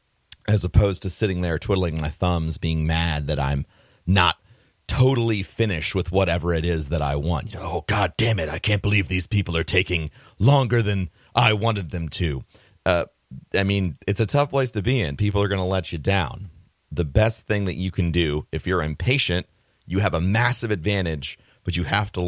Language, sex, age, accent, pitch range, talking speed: English, male, 30-49, American, 85-105 Hz, 200 wpm